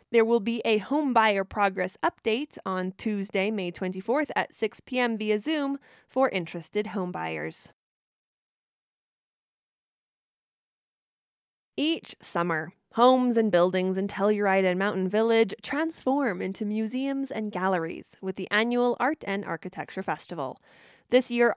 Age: 10-29